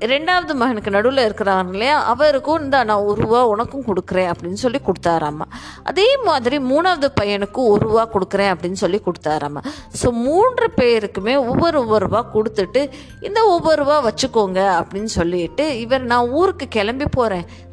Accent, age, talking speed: native, 20-39, 140 wpm